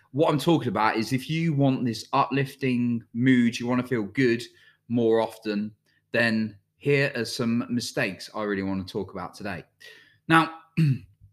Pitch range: 105-140 Hz